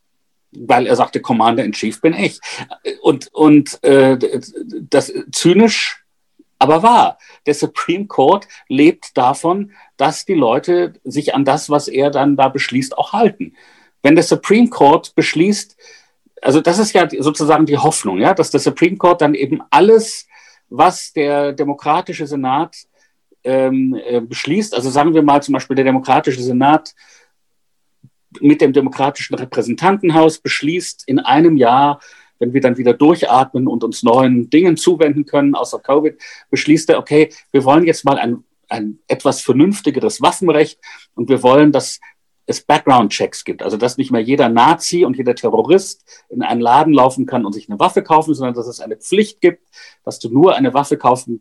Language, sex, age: German, male, 50-69